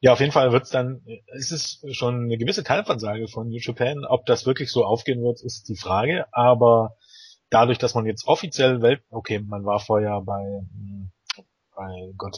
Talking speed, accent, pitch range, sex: 190 wpm, German, 105-120 Hz, male